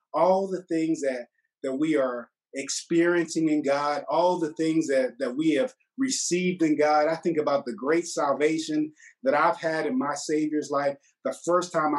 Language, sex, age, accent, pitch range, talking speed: English, male, 30-49, American, 140-175 Hz, 180 wpm